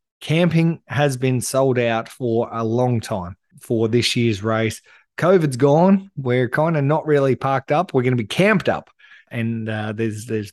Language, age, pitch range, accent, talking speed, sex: English, 20-39, 110-140 Hz, Australian, 180 wpm, male